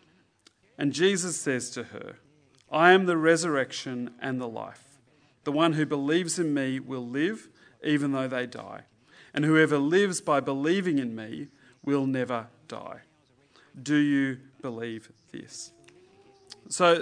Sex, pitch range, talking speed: male, 135-170 Hz, 140 wpm